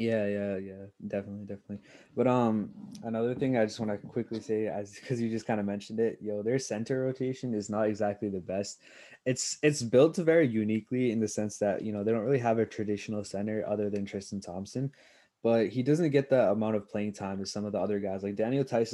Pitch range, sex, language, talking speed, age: 105-125 Hz, male, English, 230 wpm, 20-39